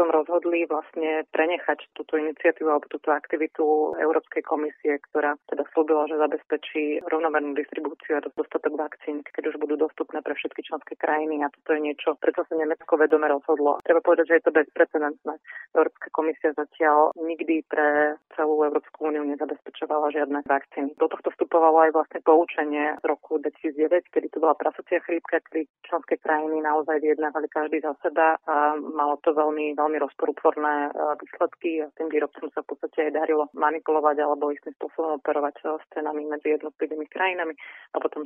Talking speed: 160 wpm